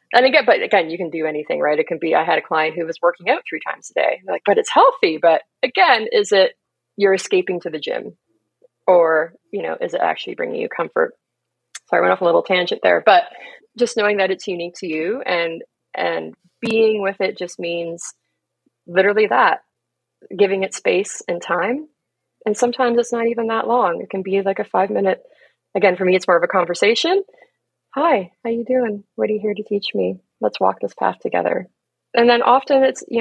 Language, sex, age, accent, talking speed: English, female, 30-49, American, 215 wpm